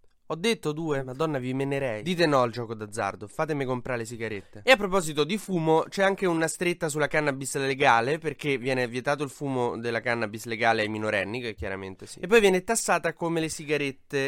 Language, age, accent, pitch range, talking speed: Italian, 20-39, native, 125-175 Hz, 195 wpm